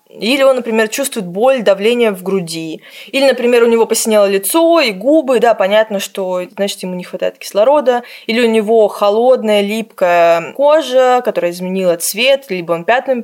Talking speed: 165 wpm